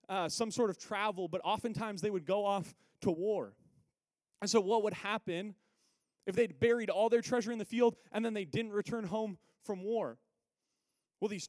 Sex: male